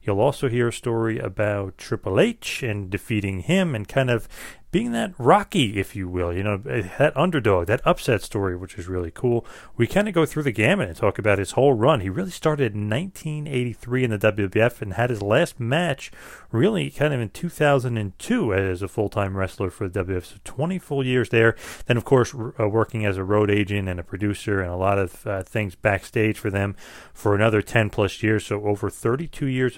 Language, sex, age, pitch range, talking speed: English, male, 30-49, 100-125 Hz, 210 wpm